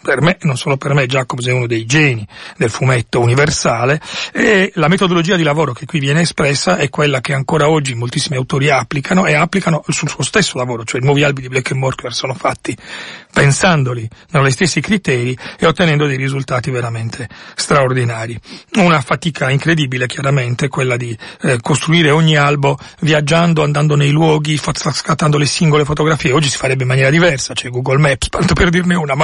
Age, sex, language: 40-59, male, Italian